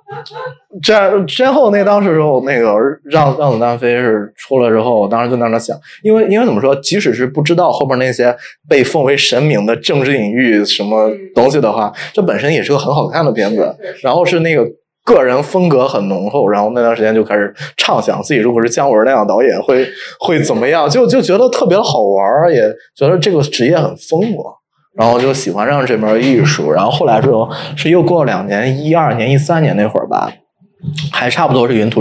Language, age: Chinese, 20-39